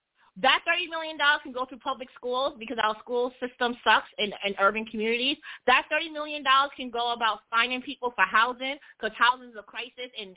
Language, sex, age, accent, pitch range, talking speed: English, female, 30-49, American, 220-320 Hz, 190 wpm